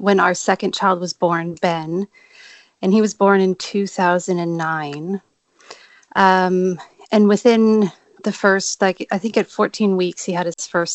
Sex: female